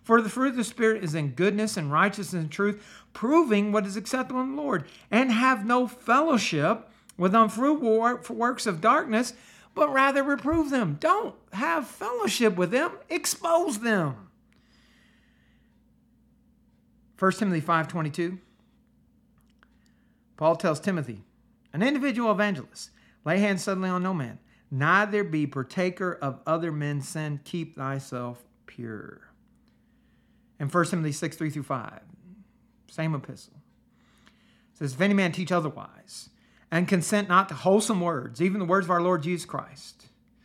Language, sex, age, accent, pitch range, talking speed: English, male, 50-69, American, 165-225 Hz, 140 wpm